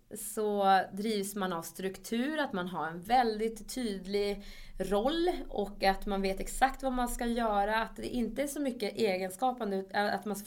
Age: 20-39